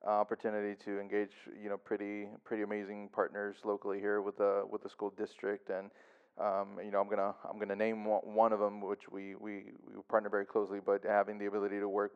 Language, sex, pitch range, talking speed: English, male, 100-105 Hz, 205 wpm